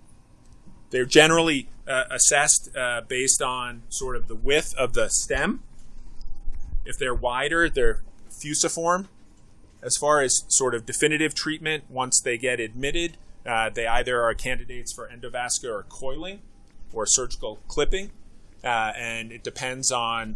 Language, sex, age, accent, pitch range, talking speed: English, male, 30-49, American, 115-135 Hz, 135 wpm